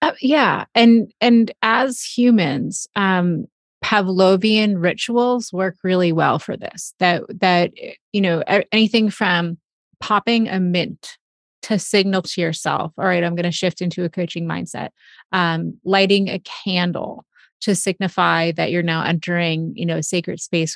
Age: 30-49